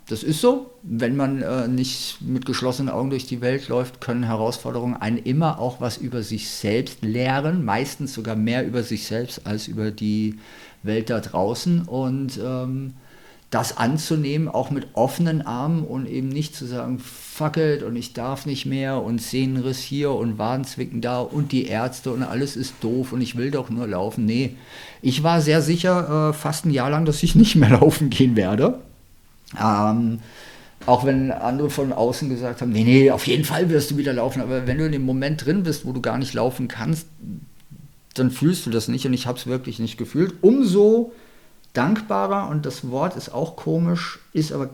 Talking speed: 195 wpm